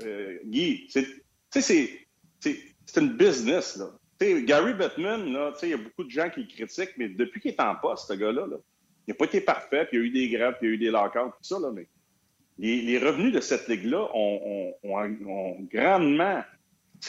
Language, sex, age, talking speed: French, male, 40-59, 220 wpm